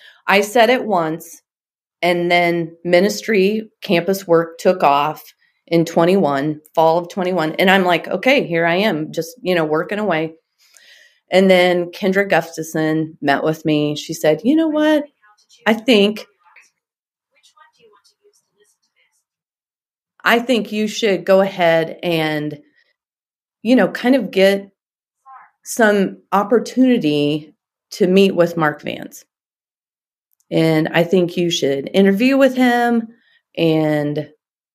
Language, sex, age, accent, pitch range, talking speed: English, female, 30-49, American, 160-205 Hz, 120 wpm